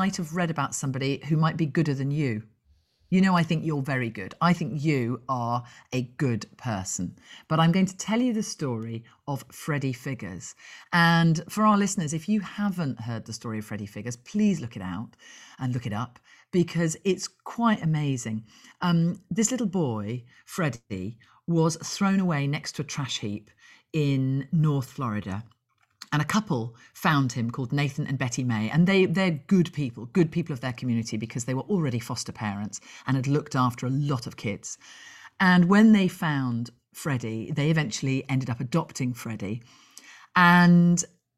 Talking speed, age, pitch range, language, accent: 180 wpm, 40-59, 120-175 Hz, English, British